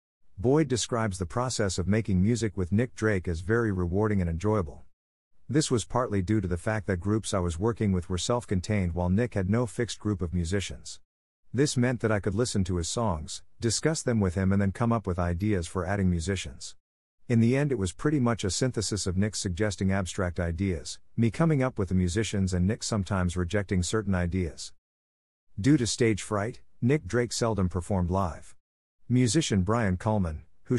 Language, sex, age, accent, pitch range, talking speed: English, male, 50-69, American, 90-115 Hz, 195 wpm